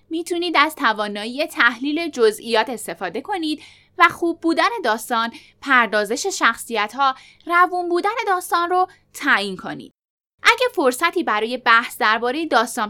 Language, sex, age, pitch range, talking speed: Persian, female, 10-29, 230-330 Hz, 115 wpm